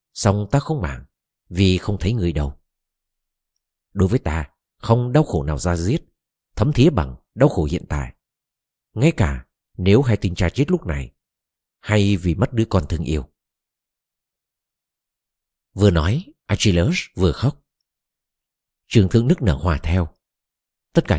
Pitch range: 80-110 Hz